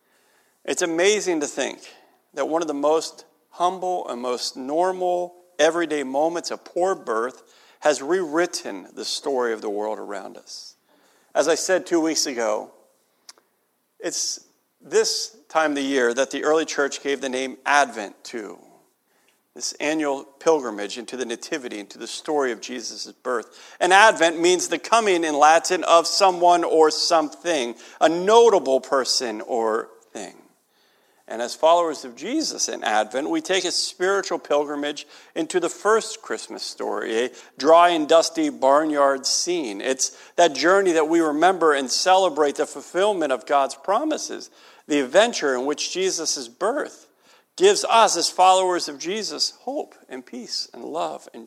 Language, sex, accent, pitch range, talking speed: English, male, American, 145-185 Hz, 150 wpm